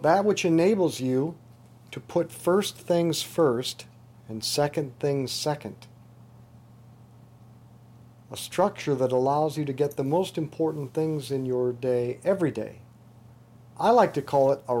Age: 50-69